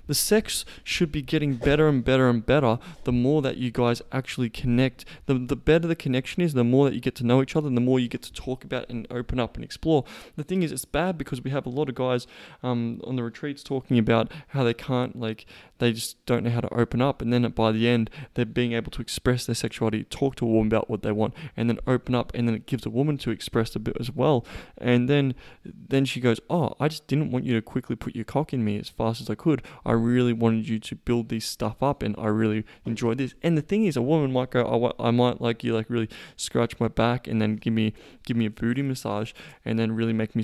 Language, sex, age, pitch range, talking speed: English, male, 20-39, 115-135 Hz, 270 wpm